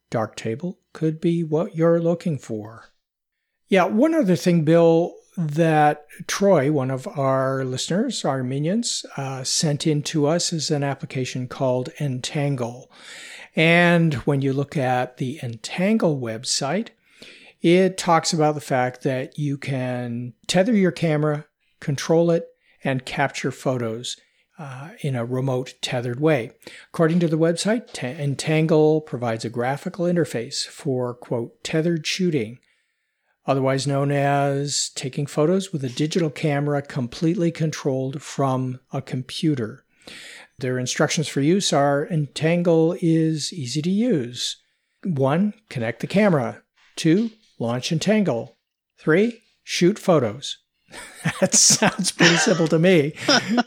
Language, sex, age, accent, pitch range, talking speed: English, male, 60-79, American, 130-170 Hz, 125 wpm